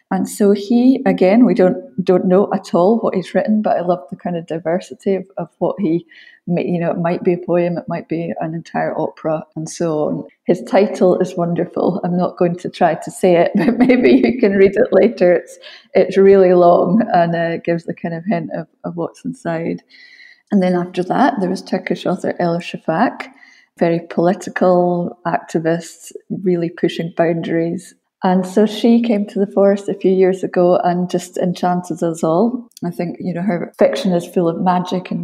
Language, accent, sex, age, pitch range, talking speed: English, British, female, 30-49, 175-200 Hz, 200 wpm